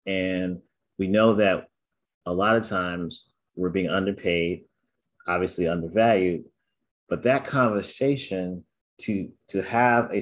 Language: English